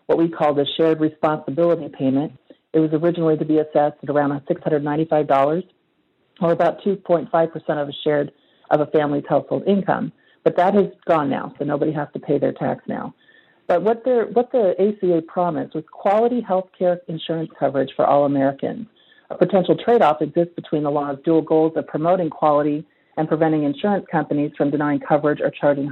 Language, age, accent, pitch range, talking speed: English, 50-69, American, 145-175 Hz, 175 wpm